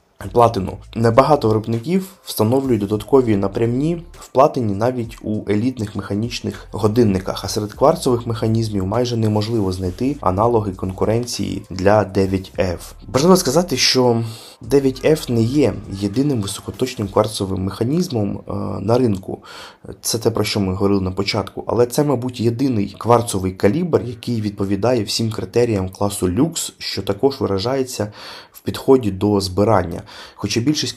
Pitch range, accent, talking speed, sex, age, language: 100-120 Hz, native, 125 wpm, male, 20-39, Ukrainian